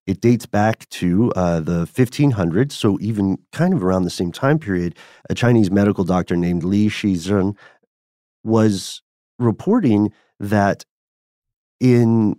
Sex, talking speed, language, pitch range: male, 130 wpm, English, 90-115 Hz